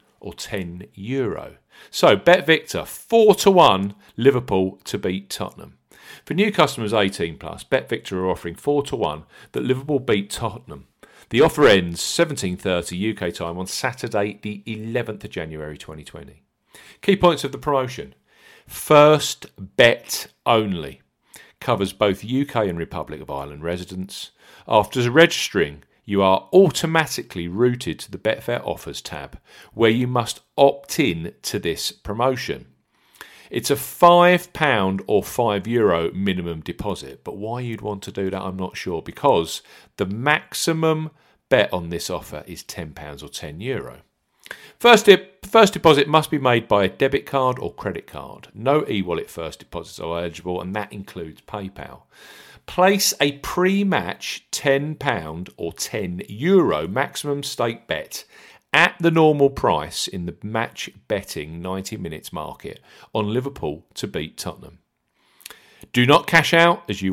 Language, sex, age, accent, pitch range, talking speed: English, male, 40-59, British, 95-150 Hz, 145 wpm